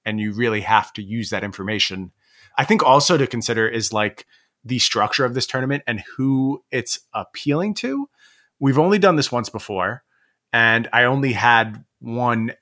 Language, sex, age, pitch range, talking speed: English, male, 30-49, 110-130 Hz, 170 wpm